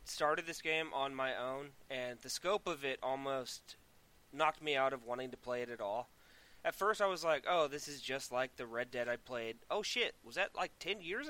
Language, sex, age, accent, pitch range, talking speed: English, male, 20-39, American, 125-190 Hz, 235 wpm